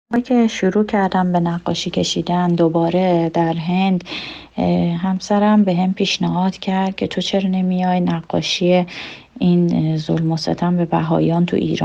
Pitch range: 165-190 Hz